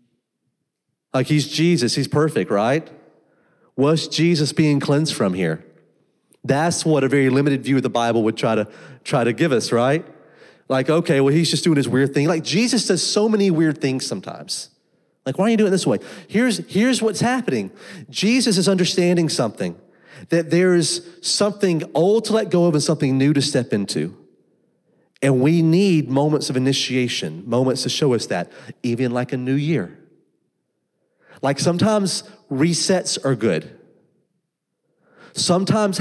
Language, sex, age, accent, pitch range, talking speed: English, male, 30-49, American, 135-180 Hz, 165 wpm